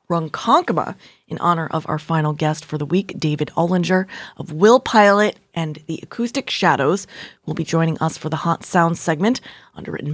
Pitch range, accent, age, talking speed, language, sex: 155-200 Hz, American, 20-39, 170 wpm, English, female